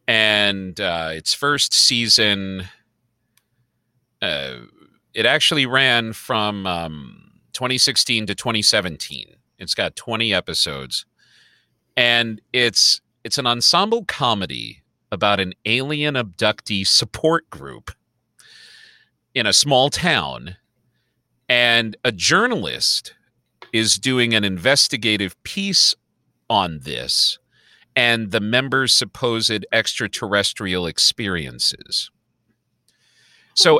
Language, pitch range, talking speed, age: English, 105-140 Hz, 90 wpm, 40-59